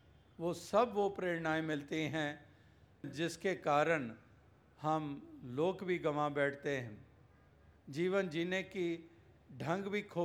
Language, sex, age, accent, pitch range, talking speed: Hindi, male, 50-69, native, 130-170 Hz, 115 wpm